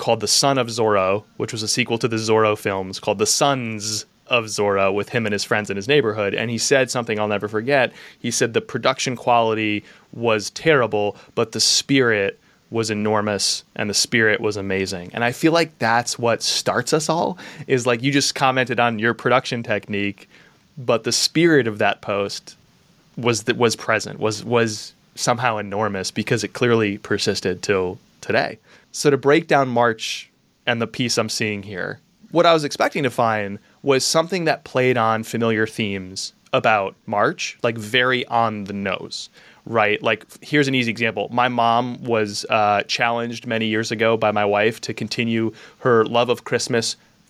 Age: 20-39